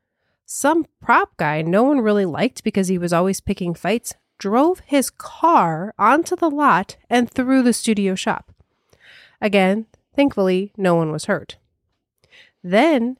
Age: 30-49